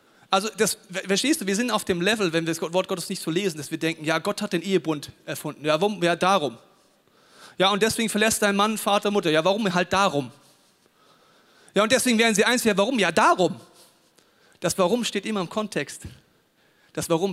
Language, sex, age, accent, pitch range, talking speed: German, male, 40-59, German, 160-220 Hz, 210 wpm